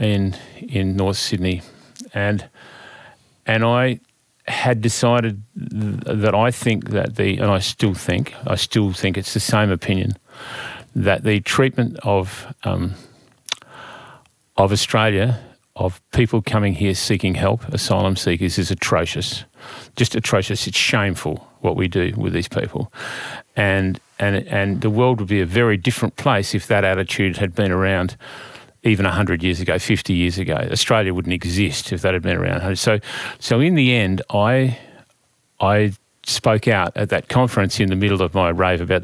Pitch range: 95-115 Hz